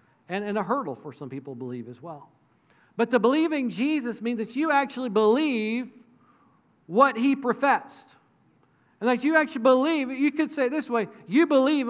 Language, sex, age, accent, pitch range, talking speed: English, male, 40-59, American, 220-280 Hz, 185 wpm